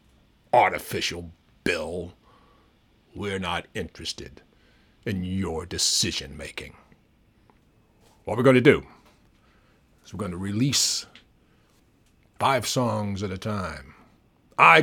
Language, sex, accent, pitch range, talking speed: English, male, American, 95-125 Hz, 95 wpm